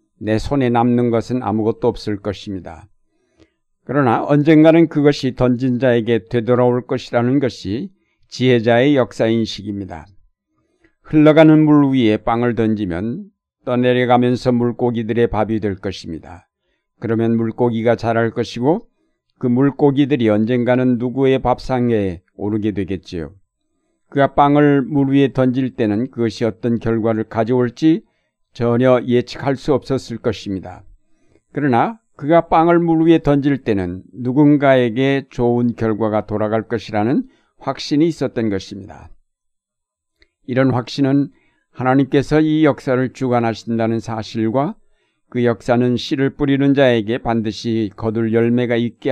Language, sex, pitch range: Korean, male, 110-140 Hz